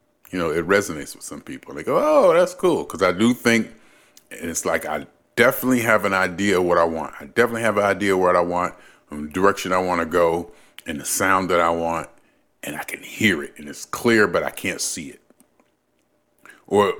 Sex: male